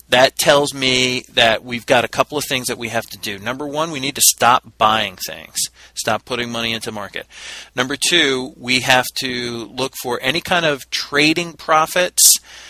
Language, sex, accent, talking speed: English, male, American, 190 wpm